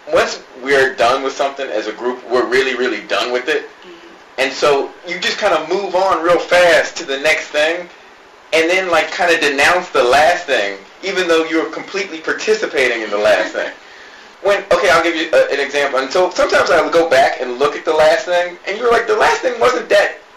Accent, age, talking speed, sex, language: American, 30-49, 225 wpm, male, English